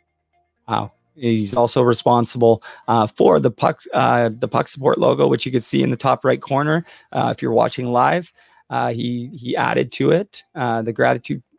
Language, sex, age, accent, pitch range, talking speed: English, male, 30-49, American, 110-135 Hz, 185 wpm